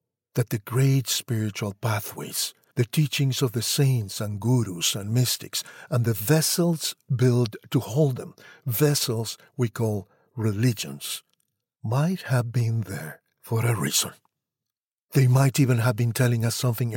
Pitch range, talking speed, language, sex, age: 115-140 Hz, 140 wpm, English, male, 60-79